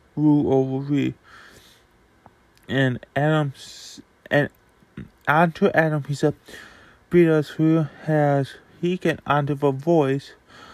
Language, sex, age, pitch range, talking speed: English, male, 20-39, 135-165 Hz, 100 wpm